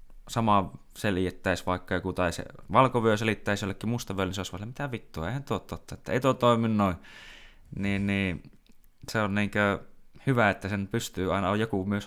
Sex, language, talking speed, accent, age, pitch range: male, Finnish, 180 wpm, native, 20-39, 85-105 Hz